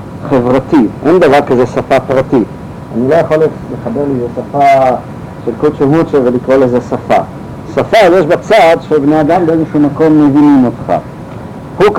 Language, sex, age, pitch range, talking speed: Hebrew, male, 50-69, 130-160 Hz, 140 wpm